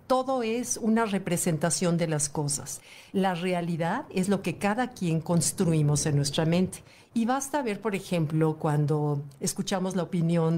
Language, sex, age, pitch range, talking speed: Spanish, female, 50-69, 160-210 Hz, 155 wpm